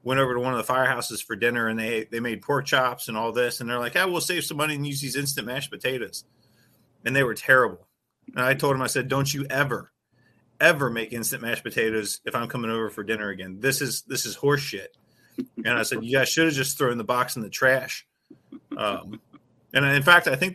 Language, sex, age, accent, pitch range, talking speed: English, male, 30-49, American, 110-135 Hz, 245 wpm